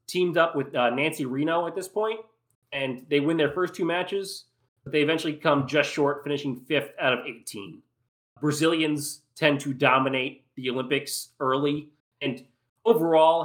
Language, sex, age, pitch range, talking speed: English, male, 30-49, 130-150 Hz, 160 wpm